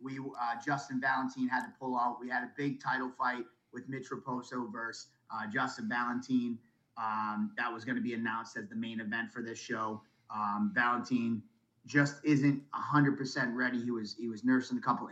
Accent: American